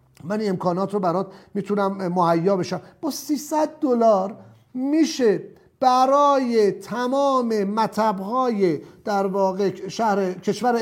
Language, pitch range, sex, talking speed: English, 185-235 Hz, male, 110 wpm